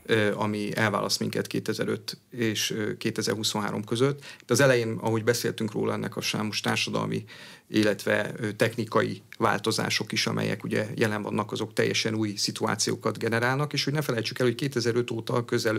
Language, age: Hungarian, 40-59